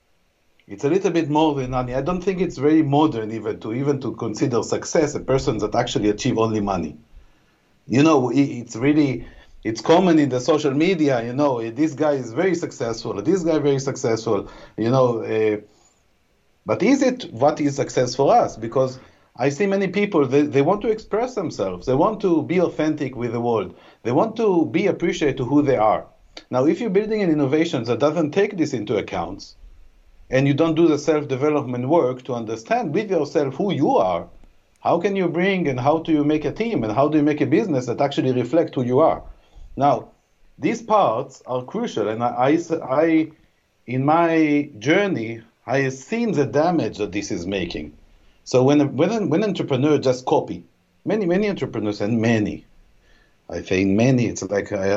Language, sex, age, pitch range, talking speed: English, male, 50-69, 115-160 Hz, 190 wpm